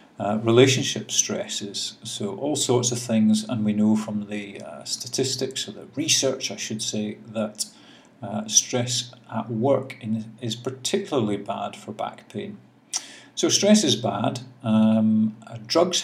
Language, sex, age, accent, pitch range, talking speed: English, male, 50-69, British, 105-120 Hz, 145 wpm